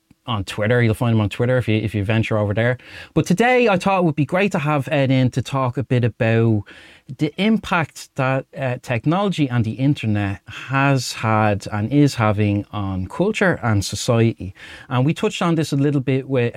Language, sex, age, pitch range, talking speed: English, male, 30-49, 100-135 Hz, 205 wpm